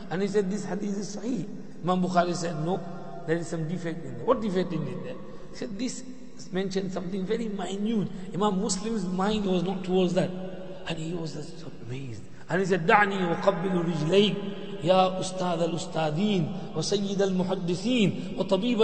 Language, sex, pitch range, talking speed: English, male, 180-225 Hz, 170 wpm